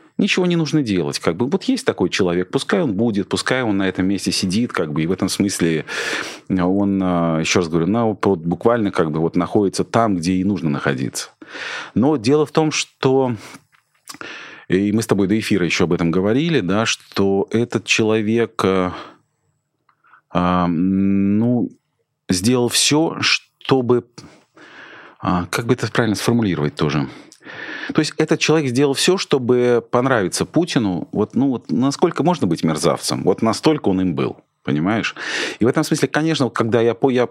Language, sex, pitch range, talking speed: Russian, male, 90-125 Hz, 165 wpm